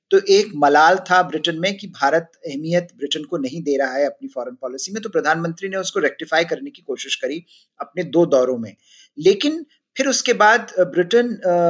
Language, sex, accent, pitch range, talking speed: Hindi, male, native, 160-205 Hz, 190 wpm